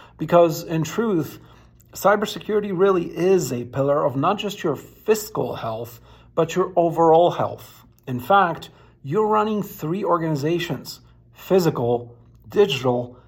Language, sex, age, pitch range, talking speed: English, male, 50-69, 135-175 Hz, 115 wpm